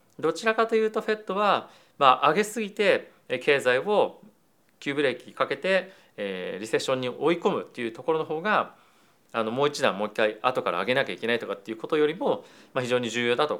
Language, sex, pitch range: Japanese, male, 110-165 Hz